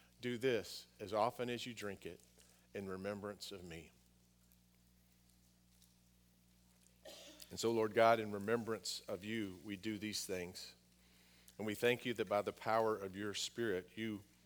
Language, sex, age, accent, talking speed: English, male, 50-69, American, 150 wpm